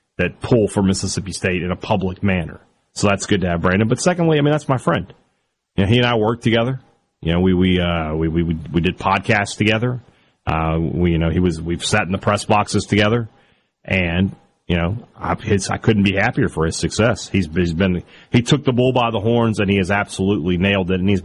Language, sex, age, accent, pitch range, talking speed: English, male, 30-49, American, 90-110 Hz, 235 wpm